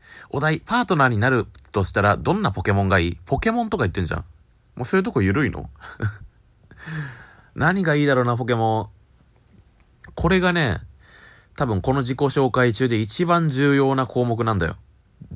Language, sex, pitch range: Japanese, male, 90-135 Hz